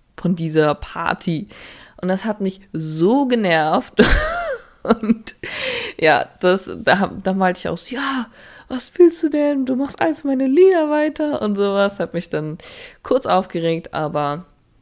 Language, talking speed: German, 145 wpm